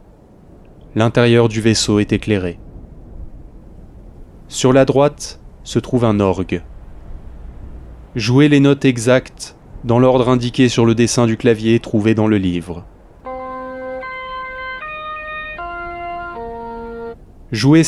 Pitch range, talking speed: 100-135 Hz, 95 wpm